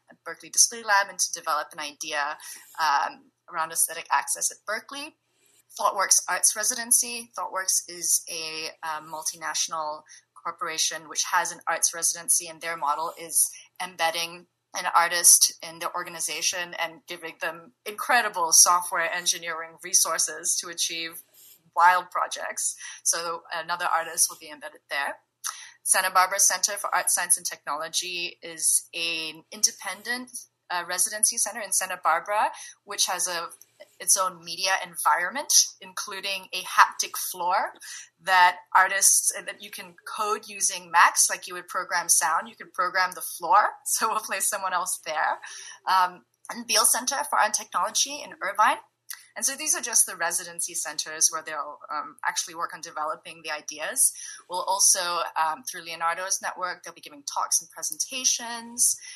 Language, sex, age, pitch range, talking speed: English, female, 30-49, 165-195 Hz, 150 wpm